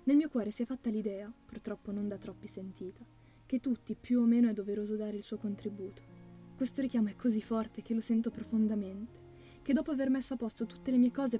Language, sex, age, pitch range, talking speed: Italian, female, 20-39, 200-230 Hz, 220 wpm